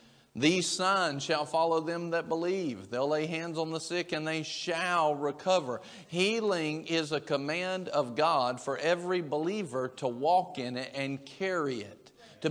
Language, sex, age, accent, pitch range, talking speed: English, male, 50-69, American, 150-210 Hz, 165 wpm